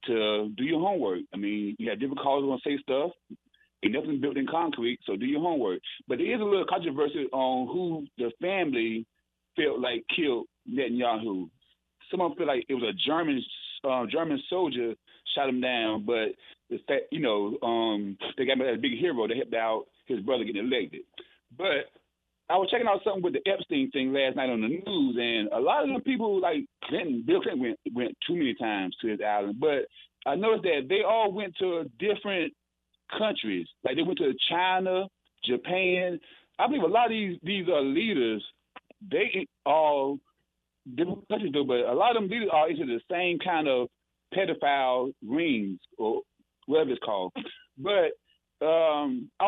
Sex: male